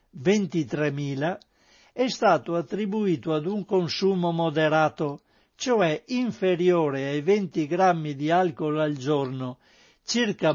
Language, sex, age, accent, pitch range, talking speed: Italian, male, 60-79, native, 155-195 Hz, 95 wpm